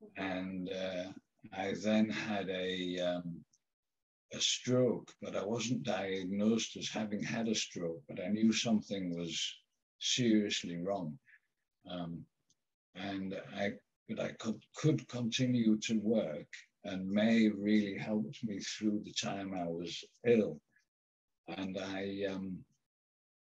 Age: 60-79